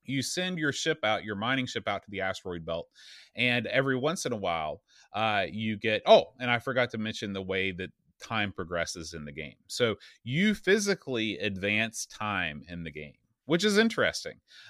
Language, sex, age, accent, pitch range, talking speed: English, male, 30-49, American, 105-130 Hz, 190 wpm